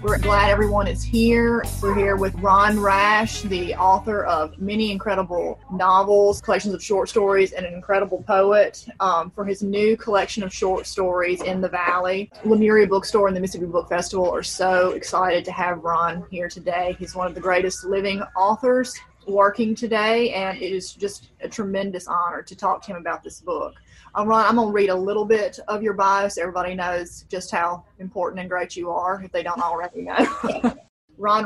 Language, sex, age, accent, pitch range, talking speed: English, female, 20-39, American, 180-210 Hz, 195 wpm